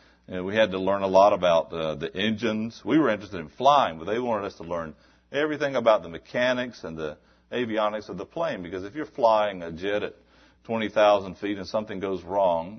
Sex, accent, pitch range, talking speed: male, American, 95-145 Hz, 205 wpm